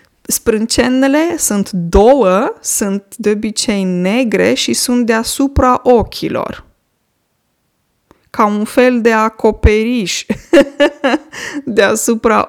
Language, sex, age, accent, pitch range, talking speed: Romanian, female, 20-39, native, 205-275 Hz, 80 wpm